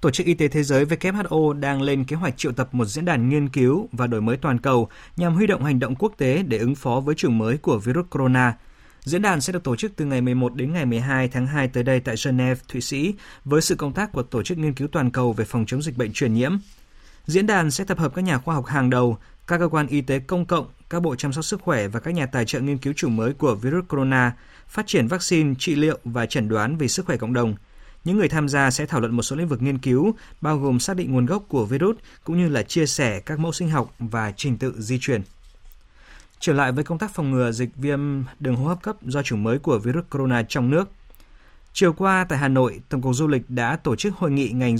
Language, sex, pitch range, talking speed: Vietnamese, male, 125-160 Hz, 265 wpm